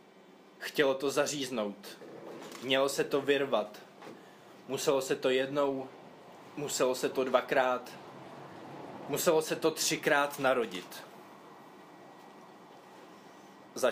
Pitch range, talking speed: 130-150 Hz, 90 wpm